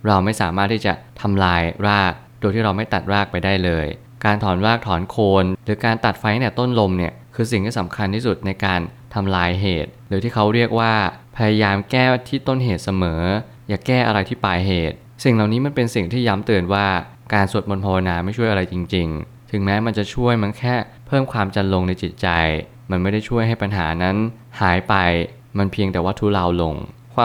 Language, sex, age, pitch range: Thai, male, 20-39, 95-115 Hz